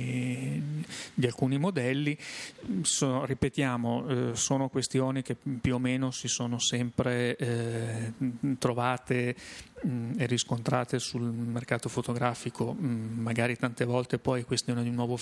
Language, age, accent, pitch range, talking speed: Italian, 30-49, native, 120-135 Hz, 105 wpm